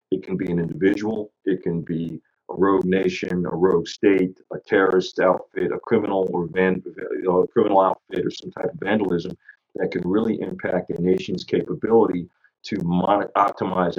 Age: 40-59